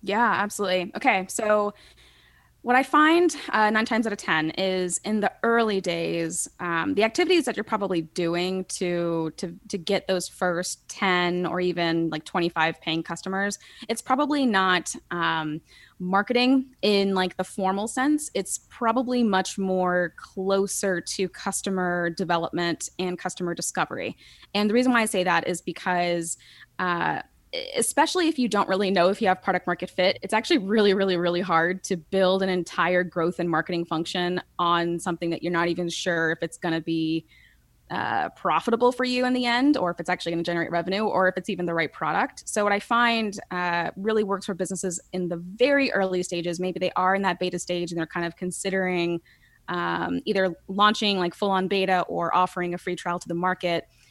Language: English